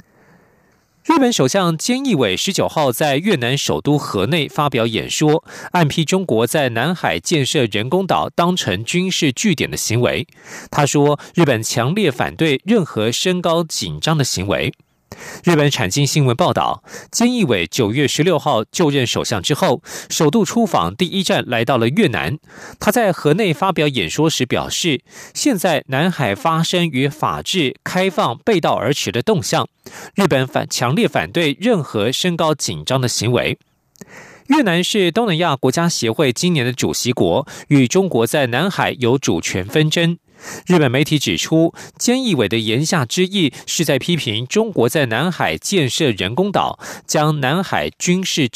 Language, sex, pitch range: German, male, 130-180 Hz